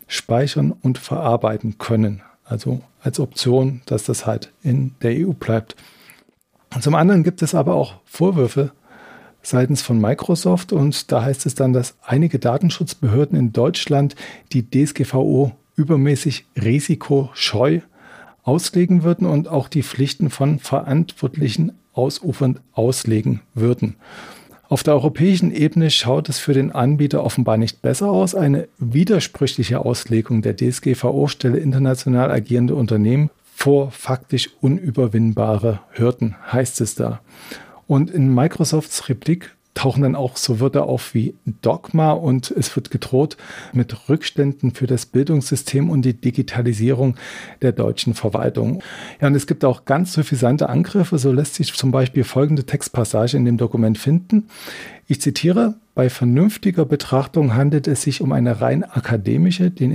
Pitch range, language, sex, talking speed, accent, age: 125-150 Hz, German, male, 135 wpm, German, 40-59